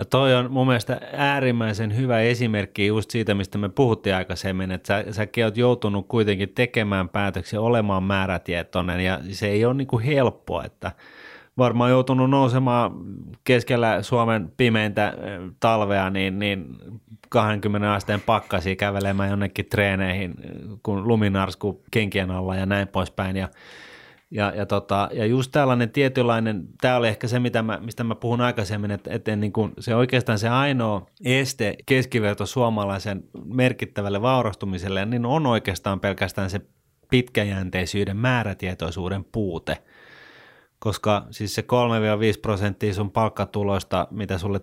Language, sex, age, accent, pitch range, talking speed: Finnish, male, 30-49, native, 100-120 Hz, 135 wpm